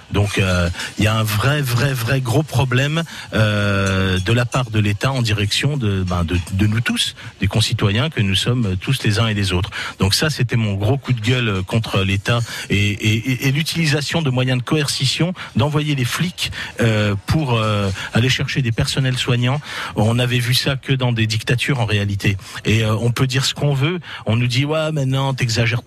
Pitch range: 105-135 Hz